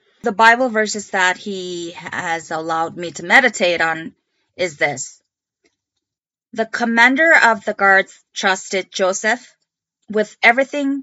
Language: English